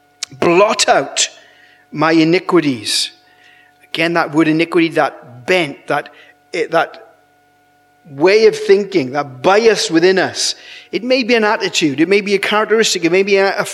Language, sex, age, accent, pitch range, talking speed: English, male, 40-59, British, 165-260 Hz, 145 wpm